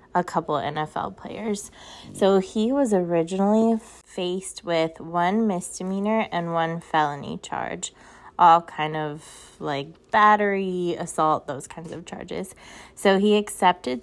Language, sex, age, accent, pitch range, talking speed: English, female, 20-39, American, 155-195 Hz, 125 wpm